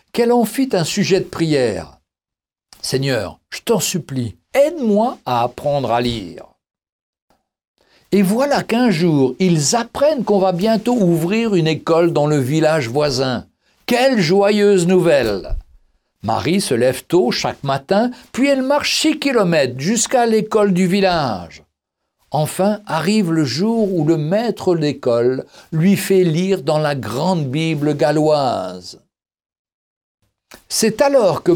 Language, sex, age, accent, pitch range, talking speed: French, male, 60-79, French, 150-215 Hz, 135 wpm